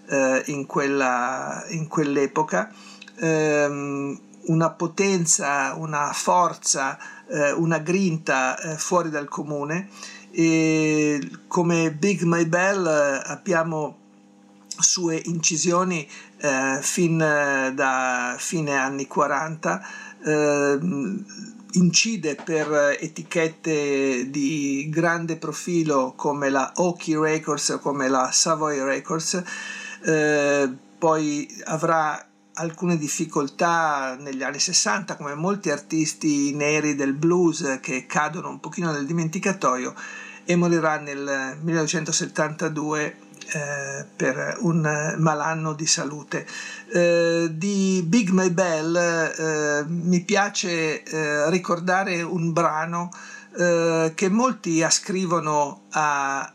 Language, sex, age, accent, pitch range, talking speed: Italian, male, 50-69, native, 145-170 Hz, 100 wpm